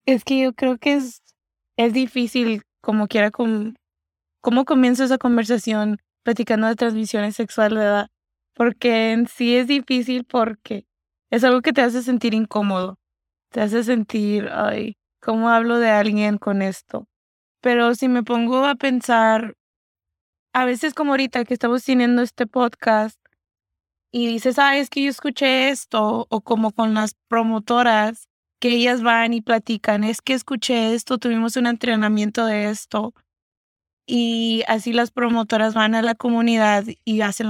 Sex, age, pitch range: female, 20-39, 215-245 Hz